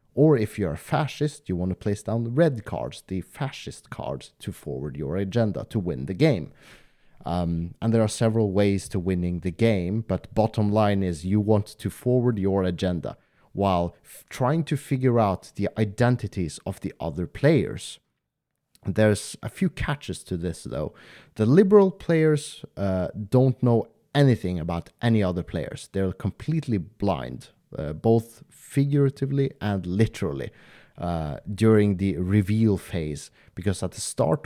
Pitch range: 95-120 Hz